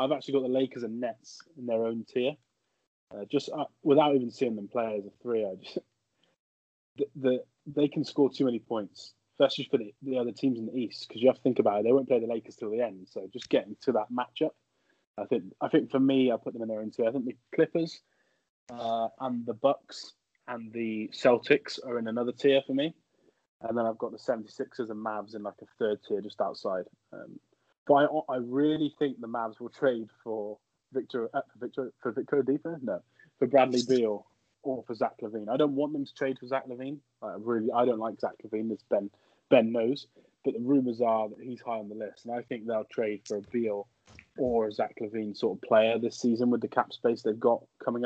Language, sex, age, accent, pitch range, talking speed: English, male, 20-39, British, 110-135 Hz, 235 wpm